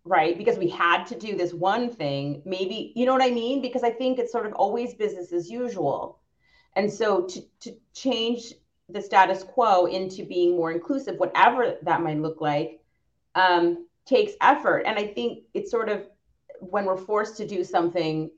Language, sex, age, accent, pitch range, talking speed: English, female, 30-49, American, 170-240 Hz, 185 wpm